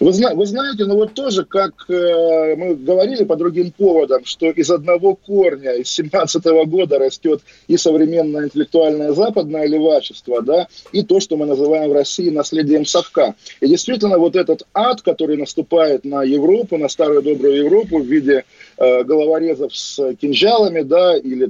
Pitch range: 150-215 Hz